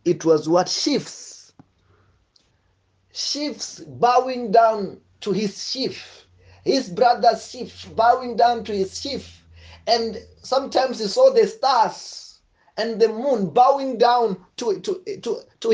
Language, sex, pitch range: English, male, 160-245 Hz